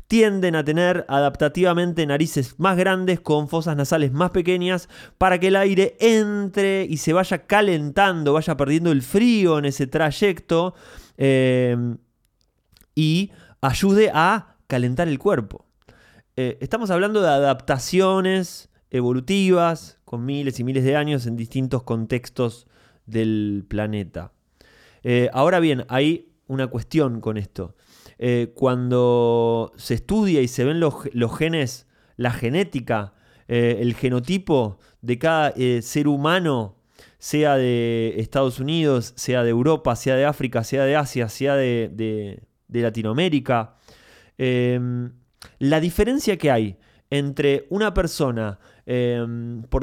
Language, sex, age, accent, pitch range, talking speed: Spanish, male, 20-39, Argentinian, 120-165 Hz, 130 wpm